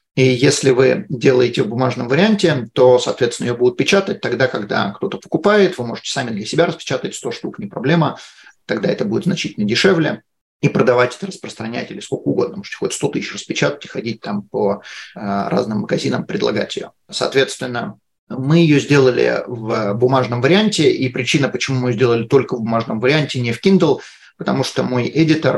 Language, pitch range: English, 125-160 Hz